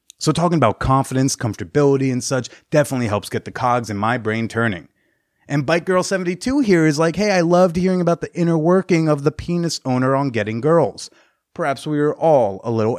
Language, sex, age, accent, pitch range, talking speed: English, male, 30-49, American, 115-160 Hz, 205 wpm